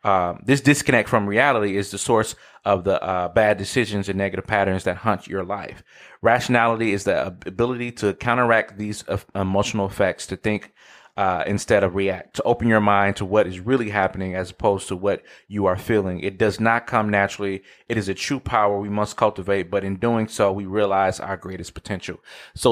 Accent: American